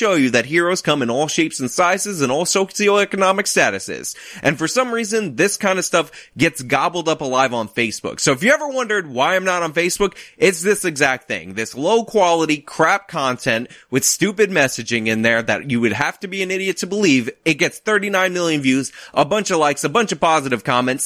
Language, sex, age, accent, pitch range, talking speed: English, male, 20-39, American, 140-210 Hz, 215 wpm